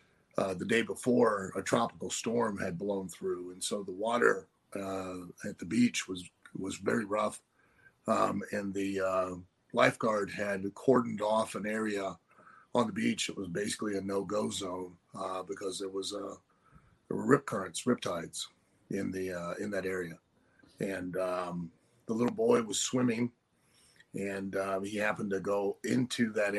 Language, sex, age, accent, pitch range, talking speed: English, male, 40-59, American, 95-110 Hz, 160 wpm